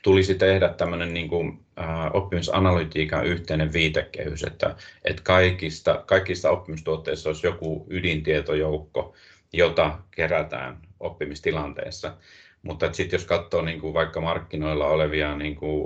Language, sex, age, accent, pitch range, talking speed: Finnish, male, 30-49, native, 75-85 Hz, 115 wpm